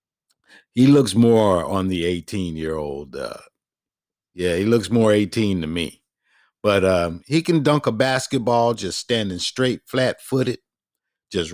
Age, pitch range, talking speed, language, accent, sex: 50-69, 105-135 Hz, 130 wpm, English, American, male